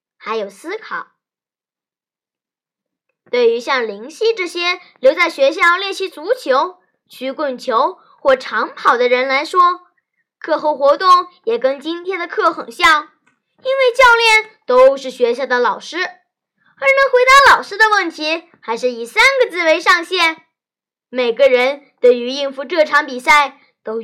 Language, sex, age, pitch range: Chinese, female, 20-39, 260-415 Hz